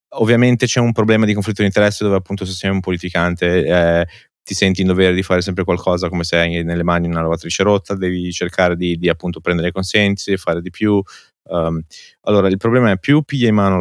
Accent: native